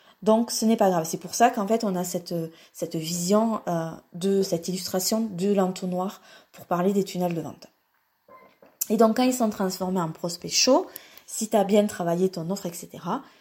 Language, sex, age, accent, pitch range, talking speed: French, female, 20-39, French, 175-220 Hz, 200 wpm